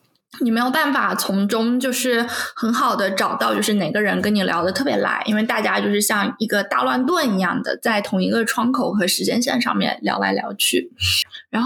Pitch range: 205-260 Hz